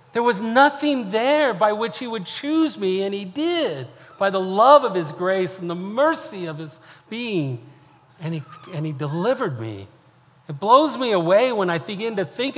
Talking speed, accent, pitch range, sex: 190 wpm, American, 125-160 Hz, male